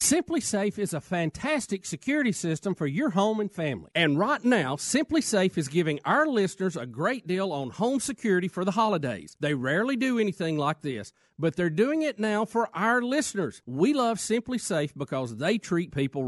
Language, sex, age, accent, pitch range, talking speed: English, male, 40-59, American, 155-225 Hz, 190 wpm